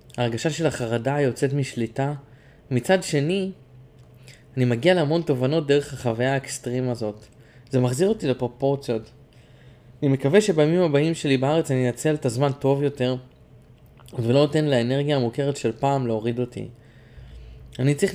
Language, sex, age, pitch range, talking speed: Hebrew, male, 20-39, 125-150 Hz, 135 wpm